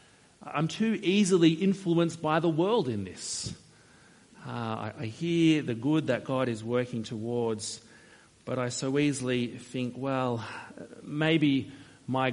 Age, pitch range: 40-59, 115-145 Hz